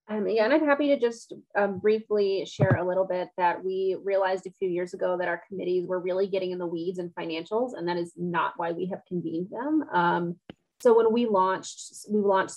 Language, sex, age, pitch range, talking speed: English, female, 30-49, 180-215 Hz, 225 wpm